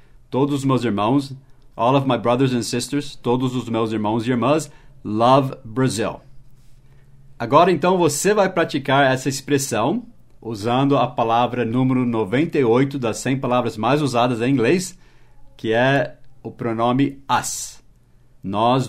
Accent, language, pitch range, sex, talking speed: Brazilian, English, 120-145 Hz, male, 135 wpm